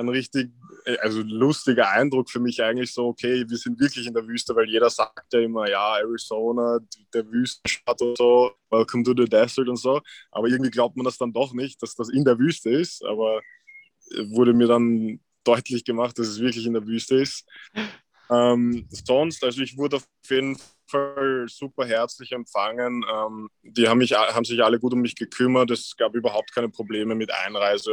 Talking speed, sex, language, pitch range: 185 wpm, male, German, 110-125 Hz